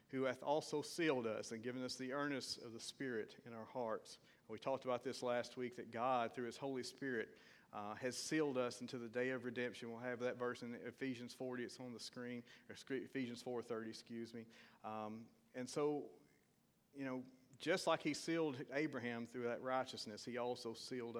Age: 40-59